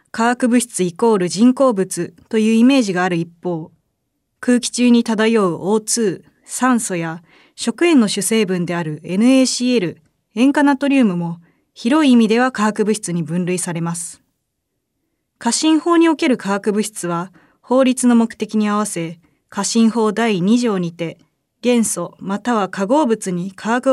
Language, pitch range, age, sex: Japanese, 180-245 Hz, 20-39, female